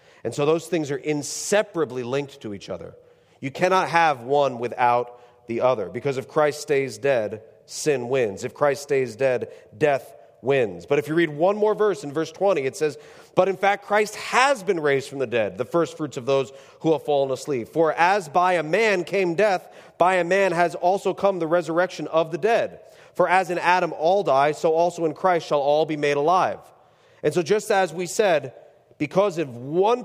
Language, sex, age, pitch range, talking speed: English, male, 40-59, 145-185 Hz, 205 wpm